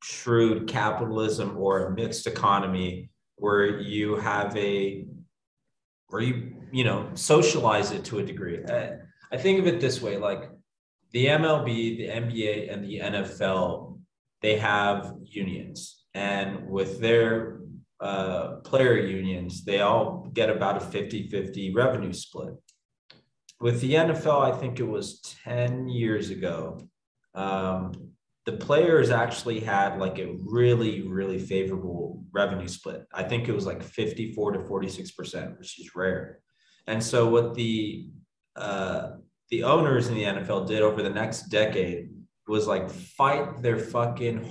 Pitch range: 100-120 Hz